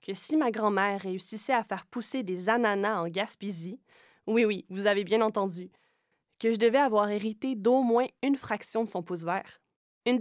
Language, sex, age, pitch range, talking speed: French, female, 20-39, 190-235 Hz, 190 wpm